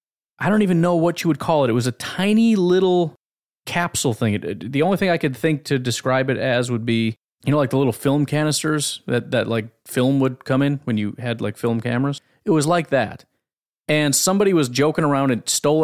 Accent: American